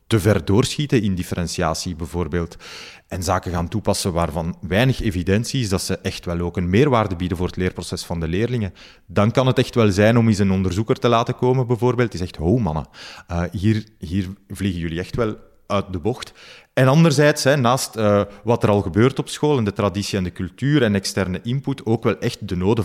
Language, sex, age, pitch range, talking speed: Dutch, male, 30-49, 95-125 Hz, 210 wpm